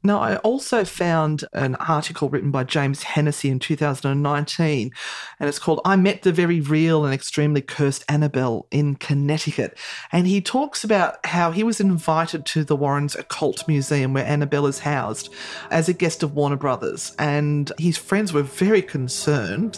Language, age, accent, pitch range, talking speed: English, 40-59, Australian, 145-190 Hz, 165 wpm